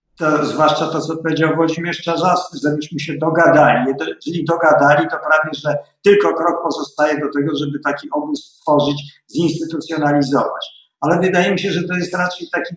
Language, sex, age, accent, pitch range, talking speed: Polish, male, 50-69, native, 145-180 Hz, 160 wpm